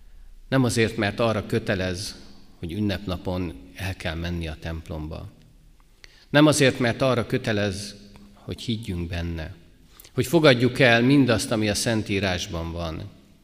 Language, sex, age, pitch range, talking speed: Hungarian, male, 50-69, 80-115 Hz, 125 wpm